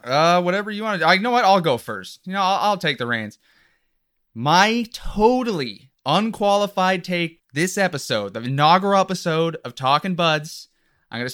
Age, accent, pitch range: 30-49, American, 135-185 Hz